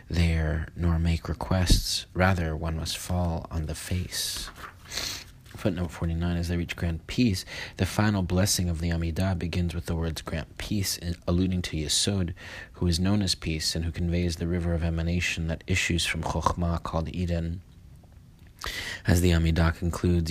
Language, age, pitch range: English, 30-49, 85-90 Hz